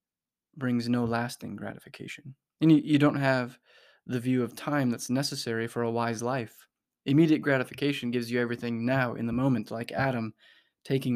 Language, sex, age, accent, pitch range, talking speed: English, male, 20-39, American, 115-140 Hz, 165 wpm